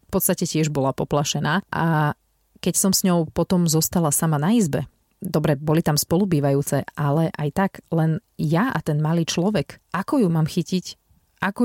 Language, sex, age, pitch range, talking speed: Slovak, female, 30-49, 155-185 Hz, 170 wpm